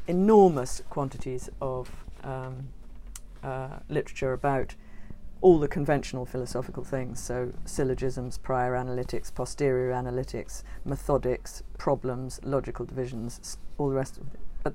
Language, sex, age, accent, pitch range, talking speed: English, female, 50-69, British, 135-175 Hz, 115 wpm